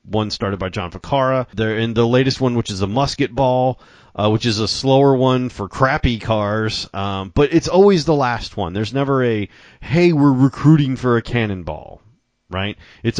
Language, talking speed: English, 185 wpm